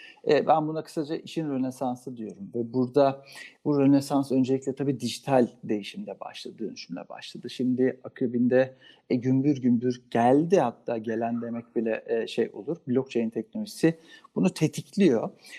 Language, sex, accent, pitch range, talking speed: Turkish, male, native, 130-195 Hz, 130 wpm